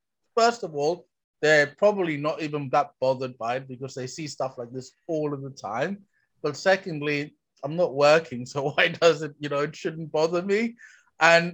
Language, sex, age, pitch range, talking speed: English, male, 30-49, 145-185 Hz, 190 wpm